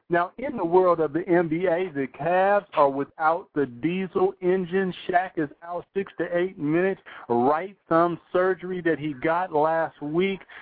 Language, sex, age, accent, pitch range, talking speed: English, male, 50-69, American, 145-170 Hz, 165 wpm